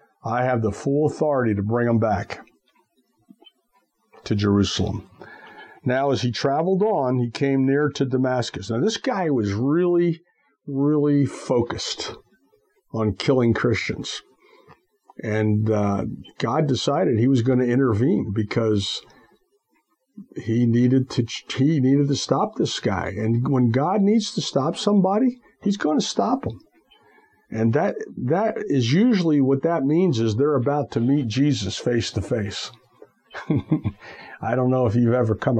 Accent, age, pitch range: American, 50-69, 110-140 Hz